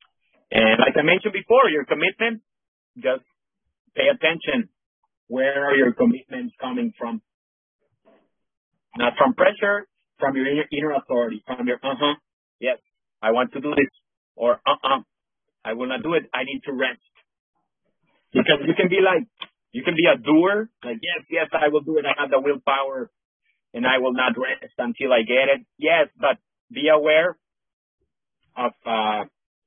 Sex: male